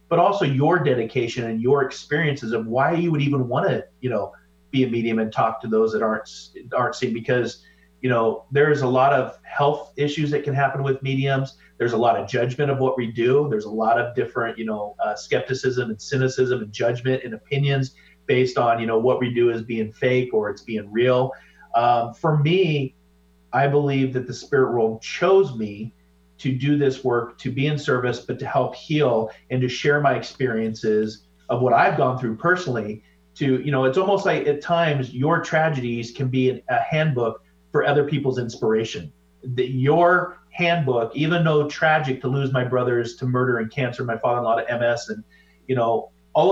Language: English